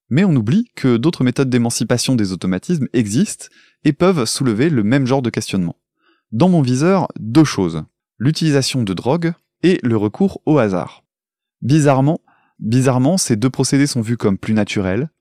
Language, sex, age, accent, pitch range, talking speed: French, male, 20-39, French, 105-145 Hz, 160 wpm